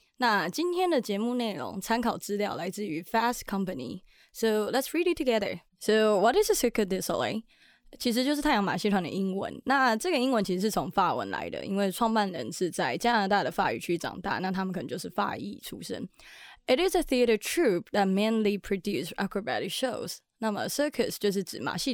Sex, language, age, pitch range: female, Chinese, 20-39, 195-240 Hz